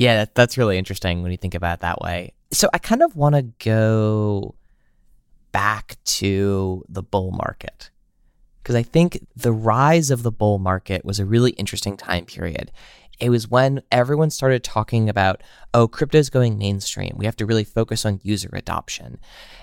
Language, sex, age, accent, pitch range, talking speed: English, male, 20-39, American, 95-125 Hz, 175 wpm